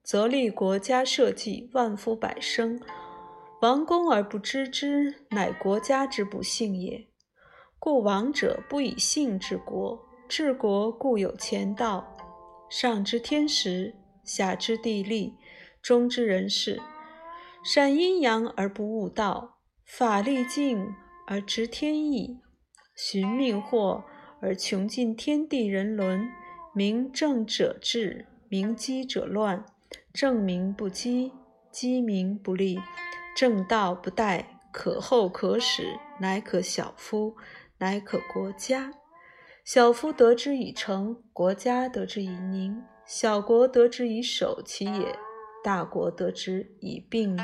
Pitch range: 200-260 Hz